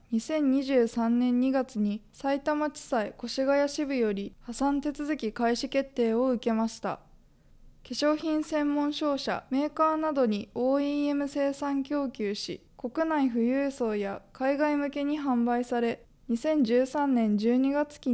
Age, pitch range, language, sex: 20-39, 235-280 Hz, Japanese, female